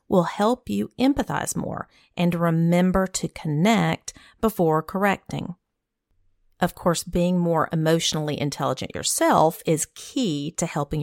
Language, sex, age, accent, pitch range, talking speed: English, female, 40-59, American, 155-200 Hz, 120 wpm